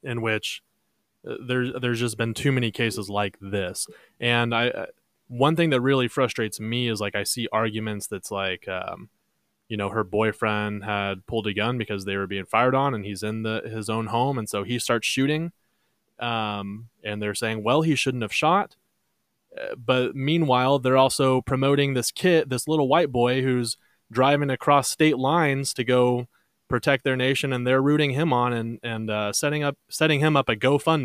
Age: 20-39